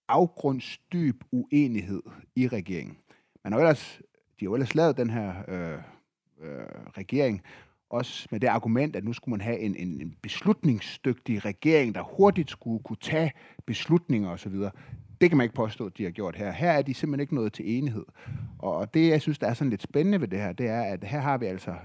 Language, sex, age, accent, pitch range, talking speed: Danish, male, 30-49, native, 105-150 Hz, 205 wpm